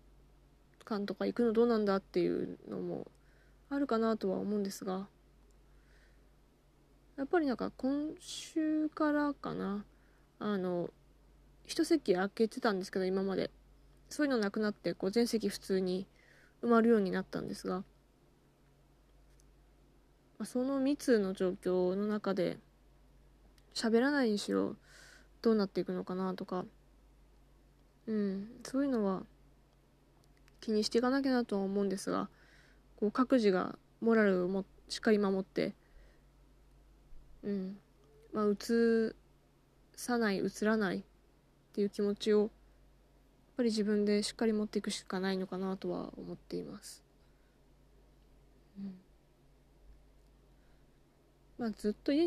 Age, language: 20-39, Japanese